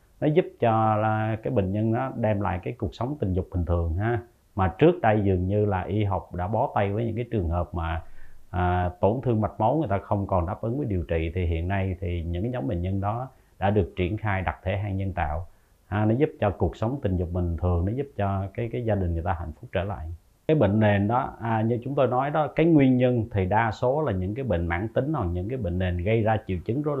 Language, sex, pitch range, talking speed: Vietnamese, male, 90-115 Hz, 265 wpm